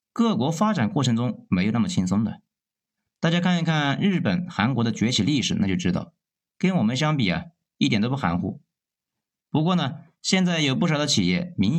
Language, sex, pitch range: Chinese, male, 115-185 Hz